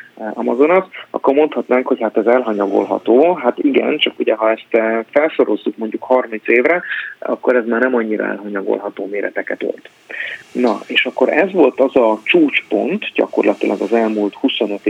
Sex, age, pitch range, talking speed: male, 30-49, 110-125 Hz, 150 wpm